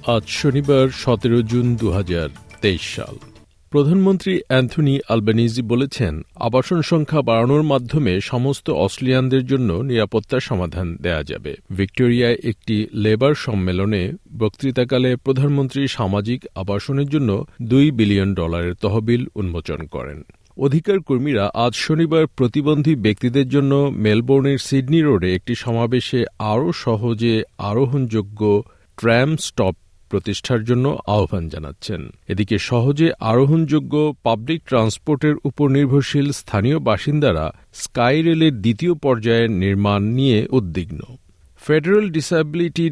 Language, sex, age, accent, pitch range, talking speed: Bengali, male, 50-69, native, 105-140 Hz, 100 wpm